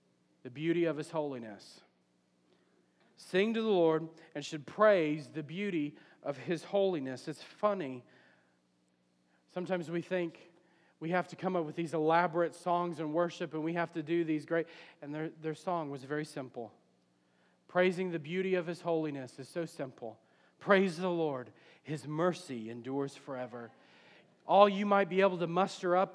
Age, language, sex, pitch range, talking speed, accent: 40-59, English, male, 160-220 Hz, 165 wpm, American